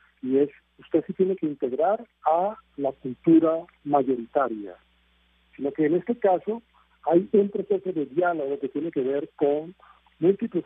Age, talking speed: 50-69, 150 wpm